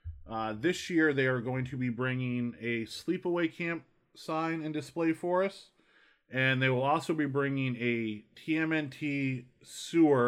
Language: English